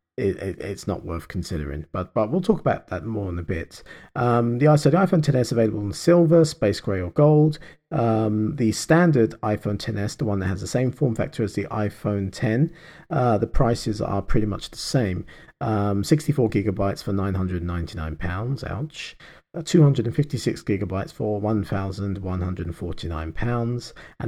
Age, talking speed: 40-59, 170 wpm